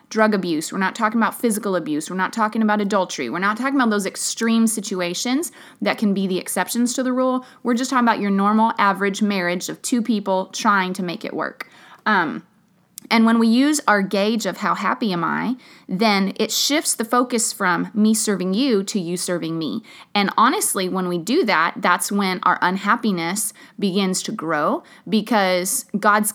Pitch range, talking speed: 180-230 Hz, 190 wpm